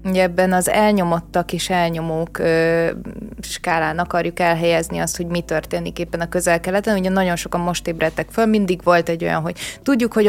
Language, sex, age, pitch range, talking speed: Hungarian, female, 20-39, 170-190 Hz, 175 wpm